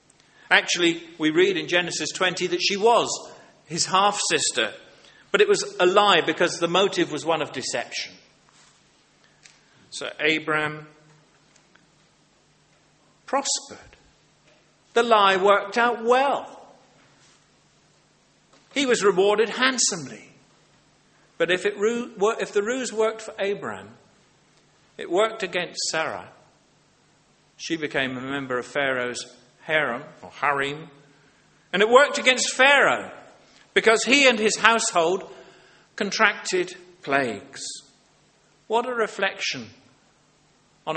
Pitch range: 150-230 Hz